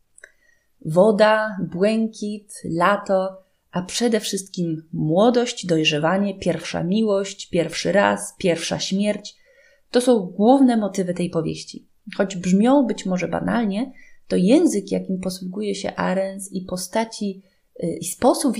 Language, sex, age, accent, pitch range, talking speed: Polish, female, 30-49, native, 180-235 Hz, 115 wpm